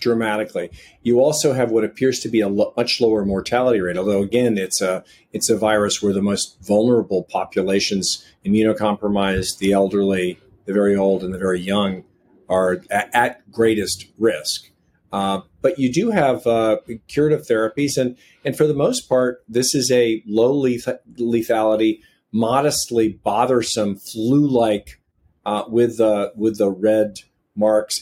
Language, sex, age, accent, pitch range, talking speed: English, male, 40-59, American, 100-120 Hz, 150 wpm